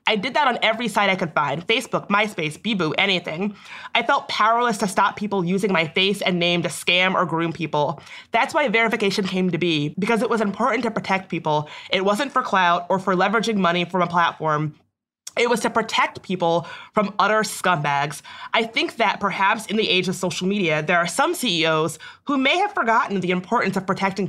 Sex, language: female, English